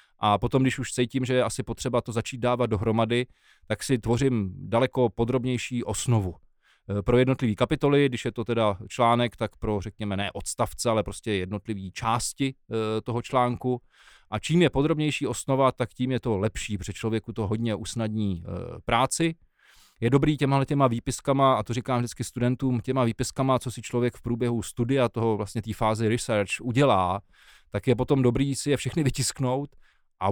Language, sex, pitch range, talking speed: Czech, male, 110-135 Hz, 170 wpm